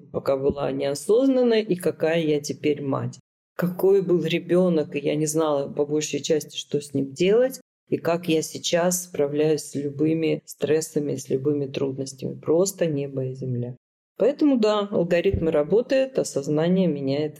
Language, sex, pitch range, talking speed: Russian, female, 140-175 Hz, 150 wpm